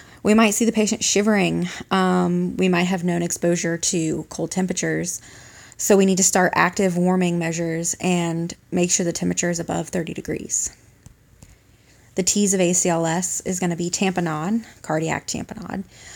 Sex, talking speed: female, 155 wpm